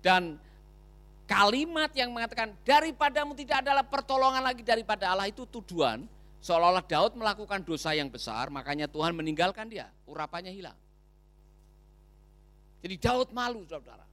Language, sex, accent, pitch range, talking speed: Indonesian, male, native, 160-195 Hz, 125 wpm